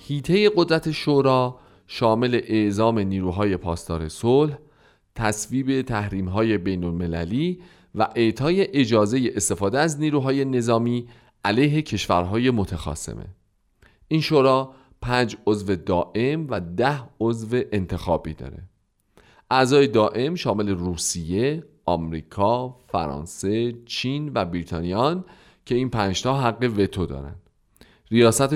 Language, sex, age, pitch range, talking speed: Persian, male, 40-59, 95-140 Hz, 100 wpm